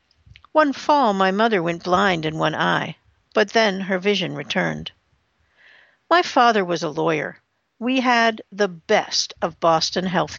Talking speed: 150 wpm